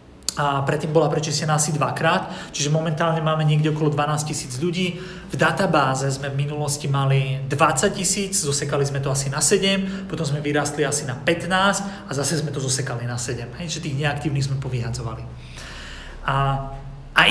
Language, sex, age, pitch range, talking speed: Slovak, male, 30-49, 140-175 Hz, 170 wpm